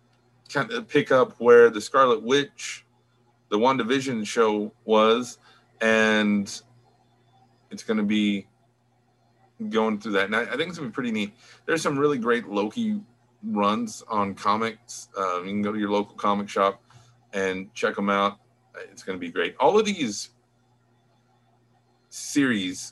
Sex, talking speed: male, 155 wpm